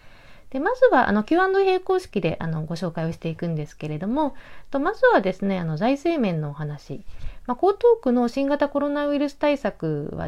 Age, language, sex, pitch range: 40-59, Japanese, female, 175-290 Hz